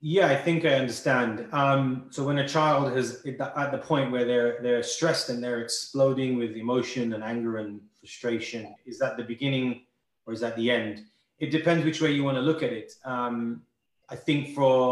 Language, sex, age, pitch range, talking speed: Arabic, male, 30-49, 125-150 Hz, 200 wpm